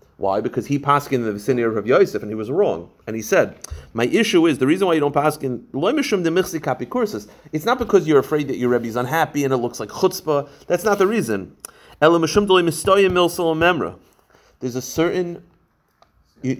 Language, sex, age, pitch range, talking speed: English, male, 30-49, 125-180 Hz, 170 wpm